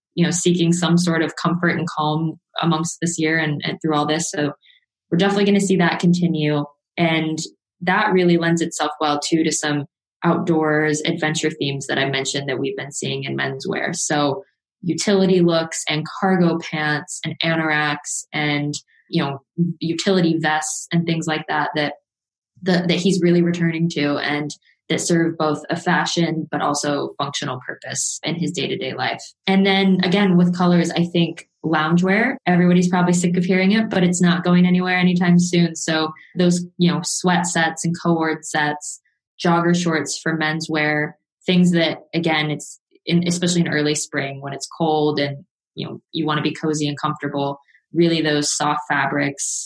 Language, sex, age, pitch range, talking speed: English, female, 20-39, 150-175 Hz, 175 wpm